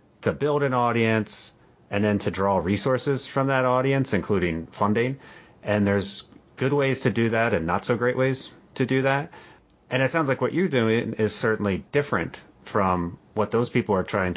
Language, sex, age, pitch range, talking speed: English, male, 30-49, 100-120 Hz, 190 wpm